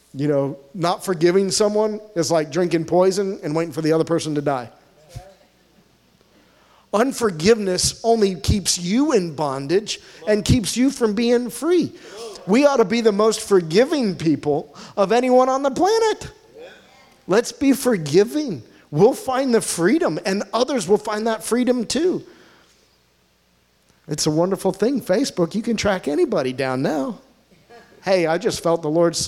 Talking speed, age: 150 wpm, 40-59